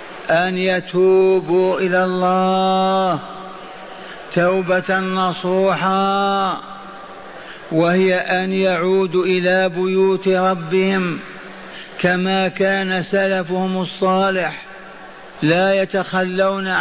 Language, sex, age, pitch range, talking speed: Arabic, male, 50-69, 185-195 Hz, 65 wpm